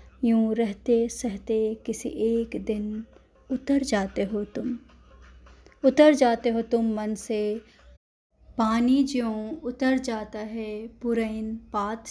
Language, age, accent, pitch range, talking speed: Hindi, 20-39, native, 215-255 Hz, 110 wpm